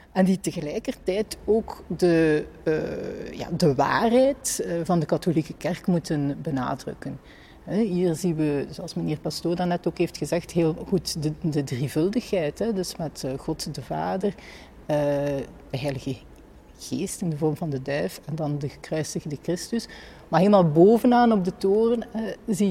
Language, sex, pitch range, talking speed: Dutch, female, 150-185 Hz, 155 wpm